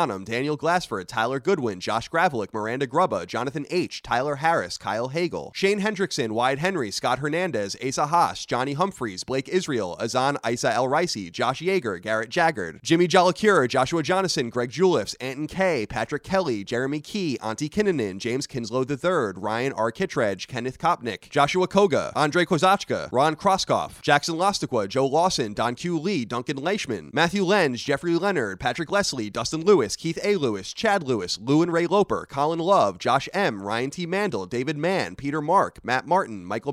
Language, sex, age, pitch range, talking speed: English, male, 30-49, 125-185 Hz, 165 wpm